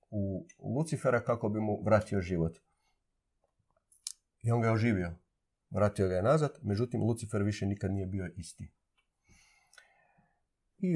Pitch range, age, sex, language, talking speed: 95-115 Hz, 40-59, male, Croatian, 130 wpm